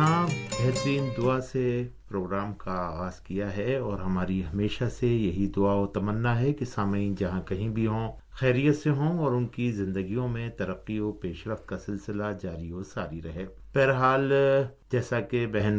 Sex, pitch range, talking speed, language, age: male, 100-125 Hz, 165 wpm, Urdu, 50-69